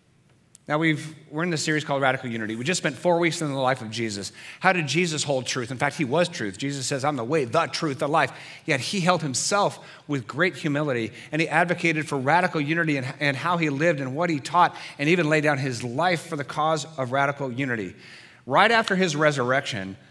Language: English